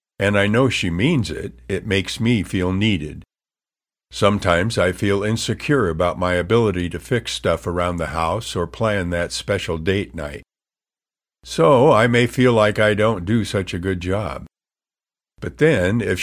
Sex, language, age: male, English, 50-69